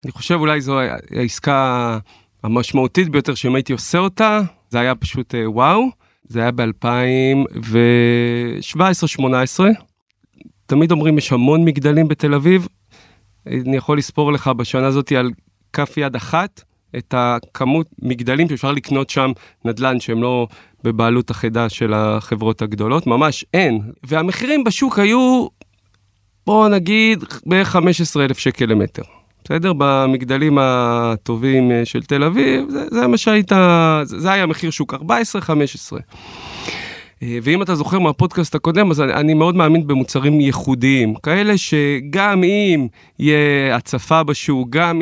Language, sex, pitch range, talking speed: Hebrew, male, 120-165 Hz, 125 wpm